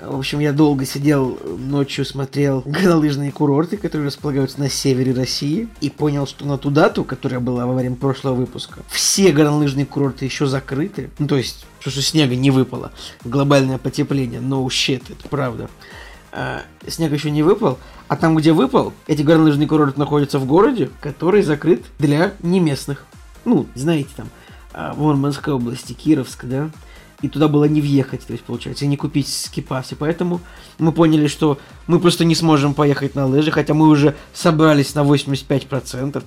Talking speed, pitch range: 165 wpm, 130-150 Hz